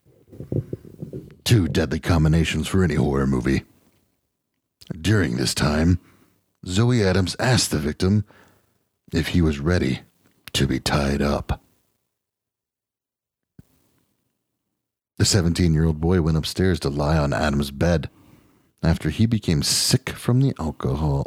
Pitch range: 85-115 Hz